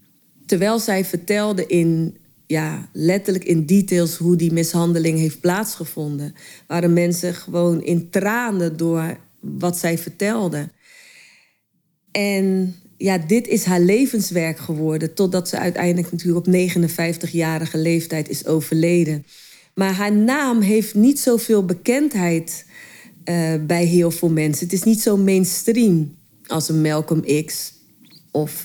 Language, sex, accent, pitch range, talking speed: Dutch, female, Dutch, 170-205 Hz, 125 wpm